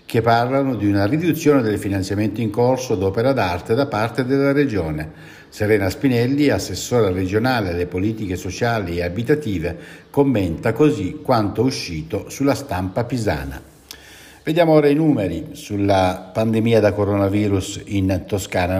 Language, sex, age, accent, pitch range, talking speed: Italian, male, 60-79, native, 100-140 Hz, 135 wpm